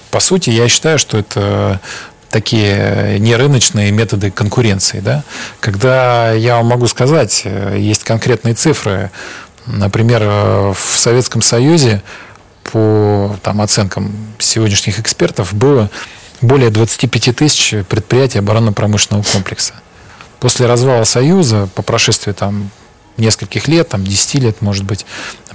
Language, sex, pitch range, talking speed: Russian, male, 105-120 Hz, 115 wpm